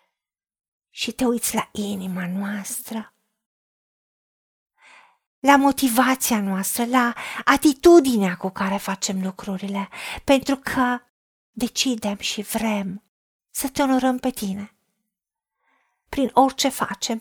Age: 40-59